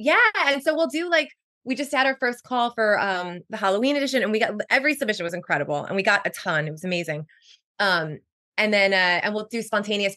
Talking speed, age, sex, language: 235 wpm, 20-39, female, English